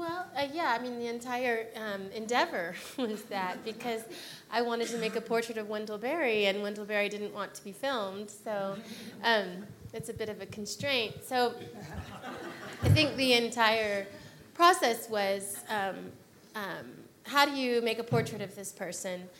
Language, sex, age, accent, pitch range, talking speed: English, female, 30-49, American, 185-230 Hz, 170 wpm